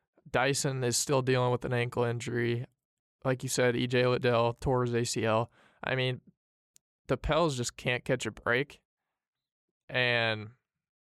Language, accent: English, American